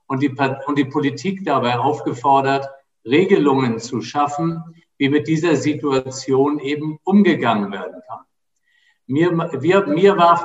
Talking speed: 125 wpm